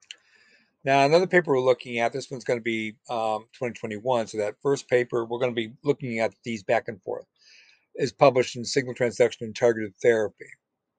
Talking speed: 180 wpm